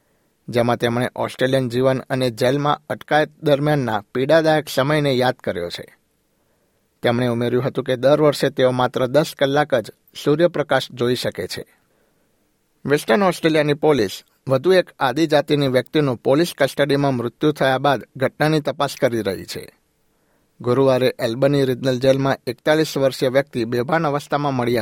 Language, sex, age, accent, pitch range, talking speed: Gujarati, male, 60-79, native, 125-150 Hz, 135 wpm